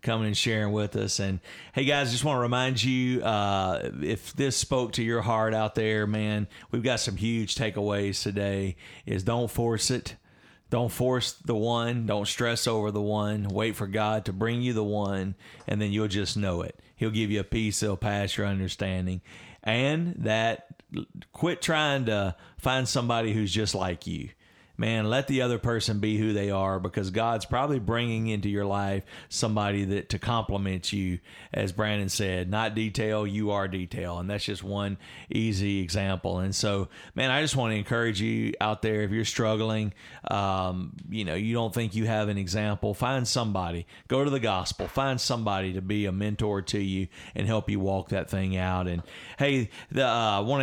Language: English